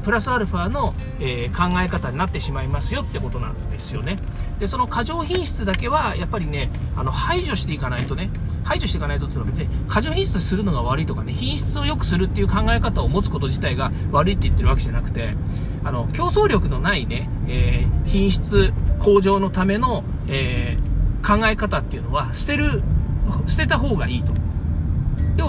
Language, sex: Japanese, male